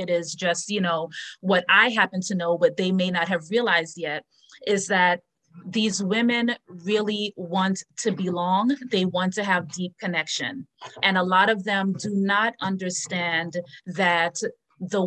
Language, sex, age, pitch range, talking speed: English, female, 30-49, 175-210 Hz, 165 wpm